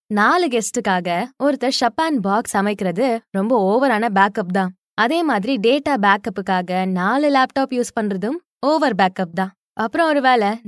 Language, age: Tamil, 20-39